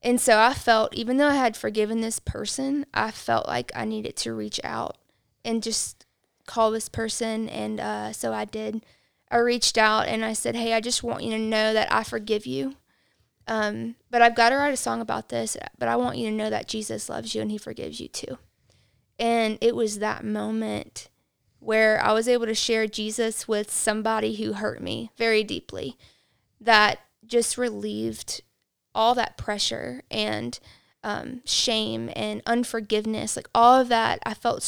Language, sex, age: English, female, 20-39